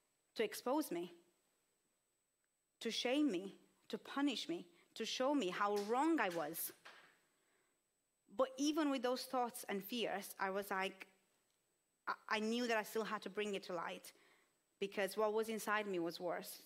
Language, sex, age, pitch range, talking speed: English, female, 30-49, 190-230 Hz, 160 wpm